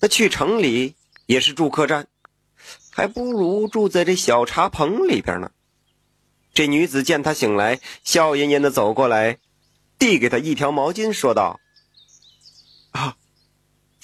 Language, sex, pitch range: Chinese, male, 135-195 Hz